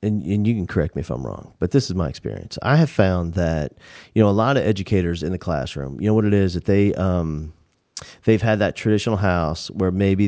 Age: 40-59